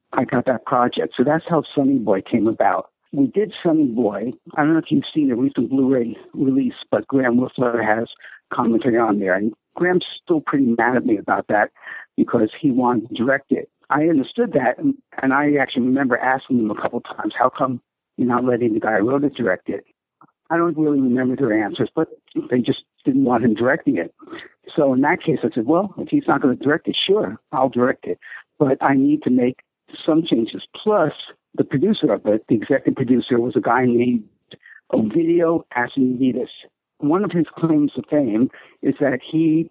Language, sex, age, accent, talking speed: English, male, 60-79, American, 205 wpm